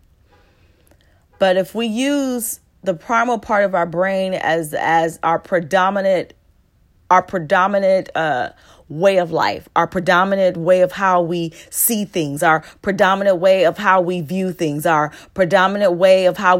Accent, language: American, English